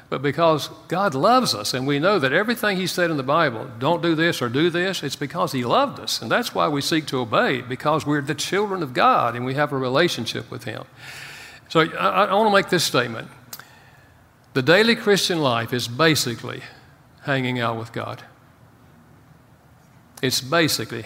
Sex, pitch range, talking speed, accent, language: male, 125-155 Hz, 190 wpm, American, English